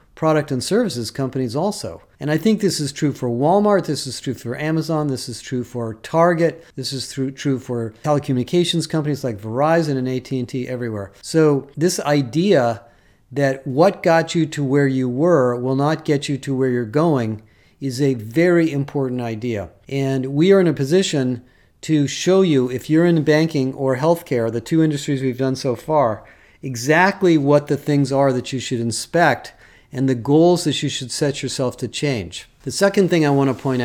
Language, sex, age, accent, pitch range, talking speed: English, male, 40-59, American, 125-160 Hz, 190 wpm